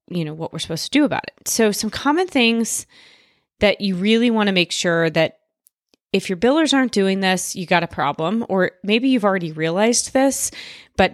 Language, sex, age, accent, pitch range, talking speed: English, female, 30-49, American, 175-225 Hz, 205 wpm